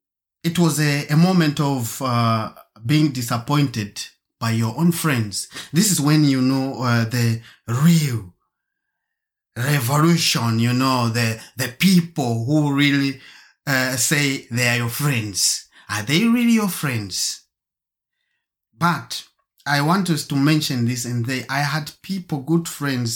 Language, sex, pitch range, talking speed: English, male, 115-150 Hz, 135 wpm